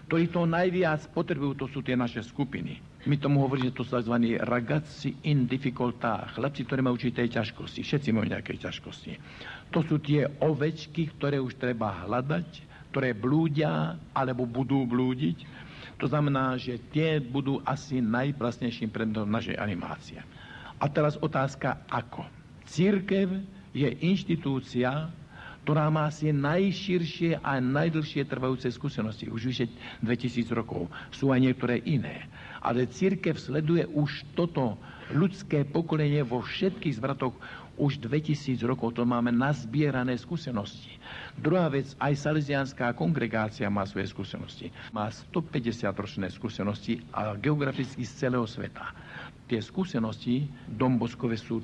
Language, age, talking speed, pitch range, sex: Slovak, 60-79, 130 wpm, 120-150 Hz, male